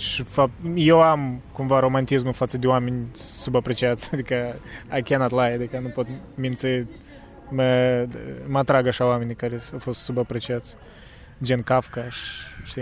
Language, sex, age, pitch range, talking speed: Romanian, male, 20-39, 125-145 Hz, 140 wpm